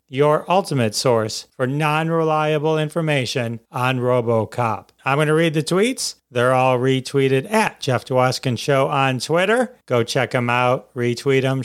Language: English